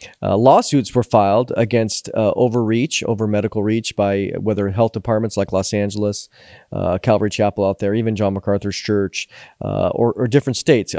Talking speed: 170 wpm